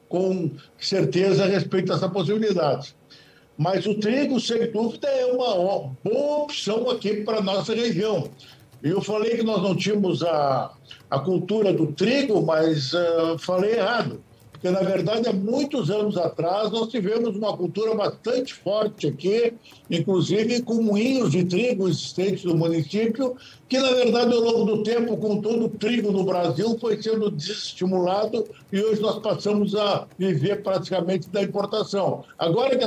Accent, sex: Brazilian, male